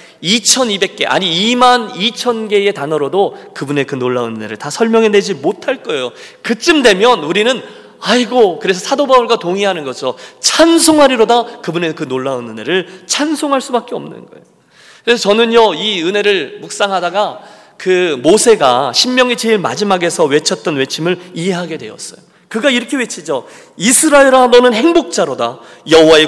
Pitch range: 195-270 Hz